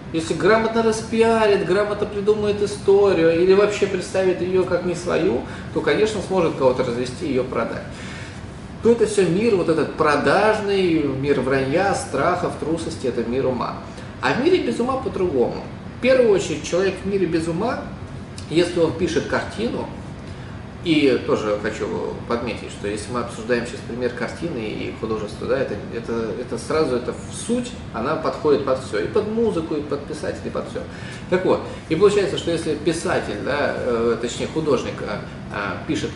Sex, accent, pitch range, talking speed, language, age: male, native, 125-195 Hz, 165 wpm, Russian, 20-39